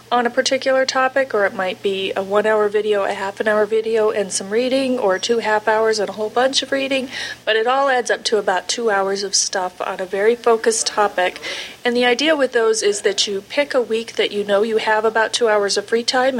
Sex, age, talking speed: female, 40-59, 240 wpm